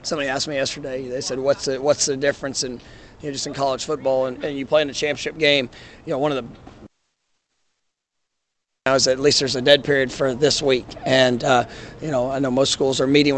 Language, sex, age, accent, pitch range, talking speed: English, male, 40-59, American, 130-145 Hz, 235 wpm